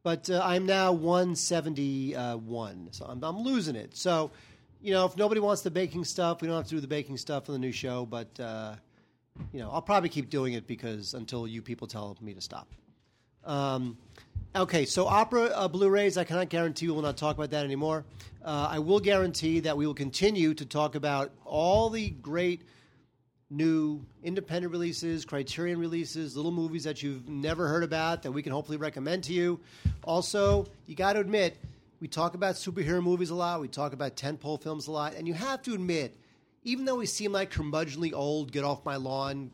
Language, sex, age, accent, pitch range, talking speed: English, male, 40-59, American, 130-175 Hz, 195 wpm